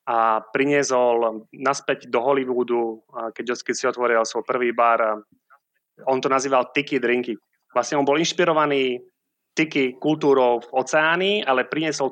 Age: 30-49